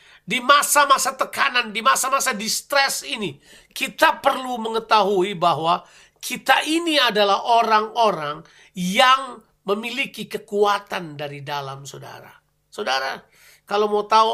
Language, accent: Indonesian, native